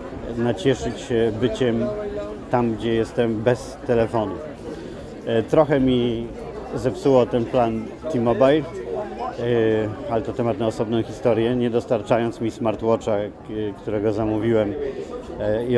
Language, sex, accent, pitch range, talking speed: Polish, male, native, 110-125 Hz, 105 wpm